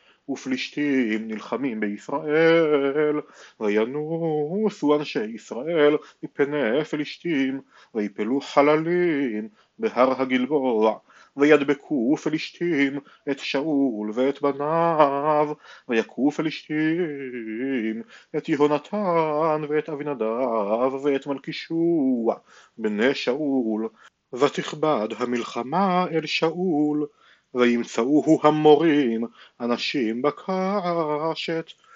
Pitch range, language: 125-155 Hz, Hebrew